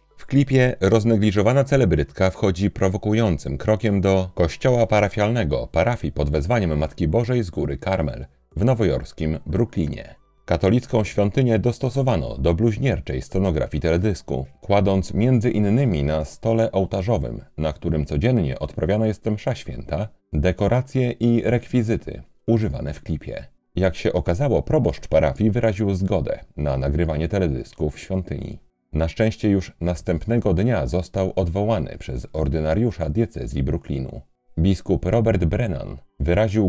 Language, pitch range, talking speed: Polish, 80-110 Hz, 120 wpm